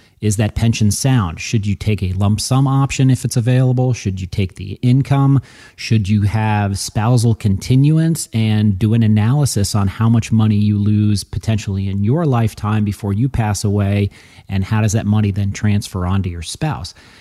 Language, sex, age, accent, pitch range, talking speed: English, male, 40-59, American, 100-125 Hz, 180 wpm